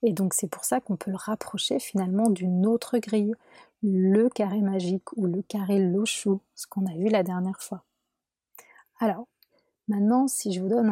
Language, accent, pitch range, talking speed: French, French, 190-235 Hz, 180 wpm